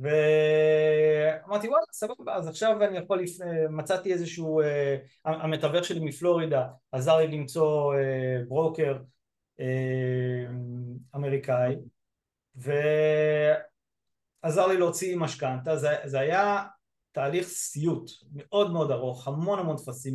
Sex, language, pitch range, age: male, Hebrew, 145-175 Hz, 30-49